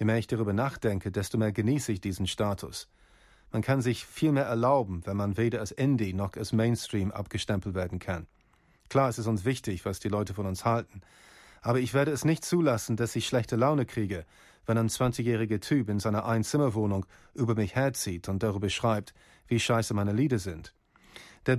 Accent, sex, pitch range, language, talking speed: German, male, 105-125 Hz, German, 190 wpm